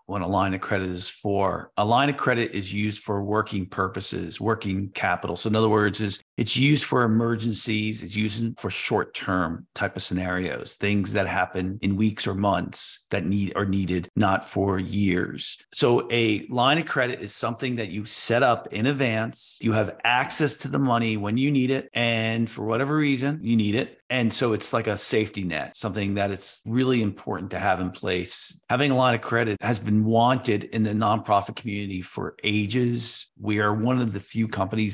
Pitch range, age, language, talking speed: 100-120 Hz, 40-59, English, 200 wpm